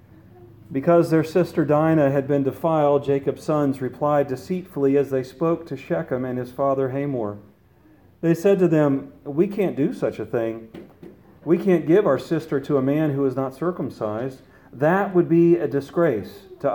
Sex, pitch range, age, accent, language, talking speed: male, 125-160 Hz, 40-59, American, English, 170 wpm